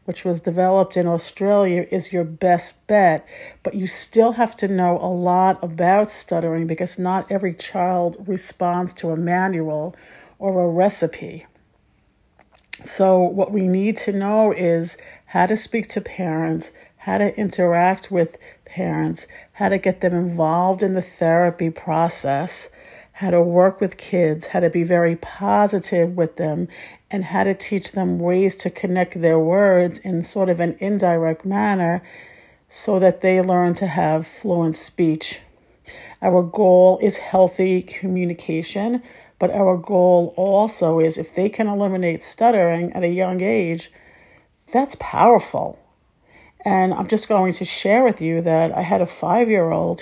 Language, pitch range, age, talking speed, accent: English, 170-195 Hz, 50-69, 150 wpm, American